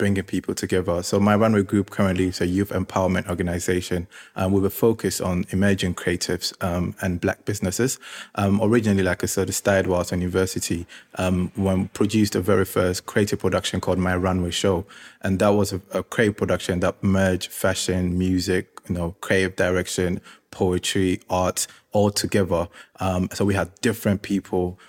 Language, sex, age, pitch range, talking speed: English, male, 20-39, 90-100 Hz, 165 wpm